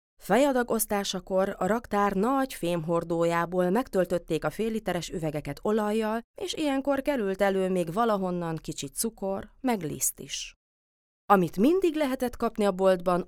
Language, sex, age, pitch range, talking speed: Hungarian, female, 30-49, 160-220 Hz, 125 wpm